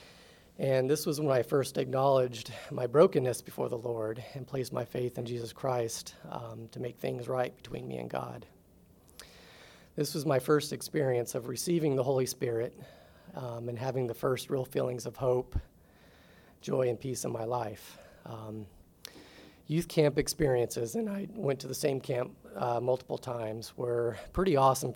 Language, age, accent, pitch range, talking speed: English, 30-49, American, 115-135 Hz, 170 wpm